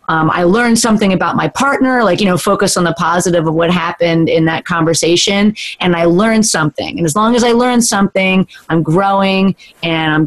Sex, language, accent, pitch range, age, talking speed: female, English, American, 165-200 Hz, 30-49, 205 wpm